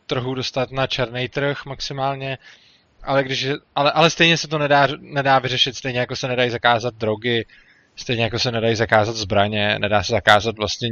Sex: male